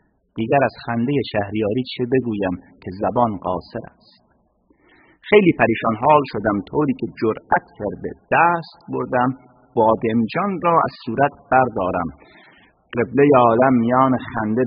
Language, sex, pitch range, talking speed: Persian, male, 110-150 Hz, 120 wpm